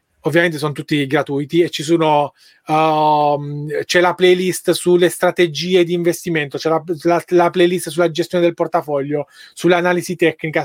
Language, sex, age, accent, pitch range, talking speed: Italian, male, 20-39, native, 155-185 Hz, 145 wpm